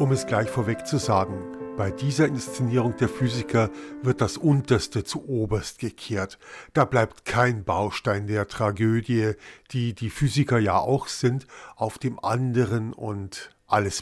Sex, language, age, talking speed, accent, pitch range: male, German, 50-69, 145 wpm, German, 110-130 Hz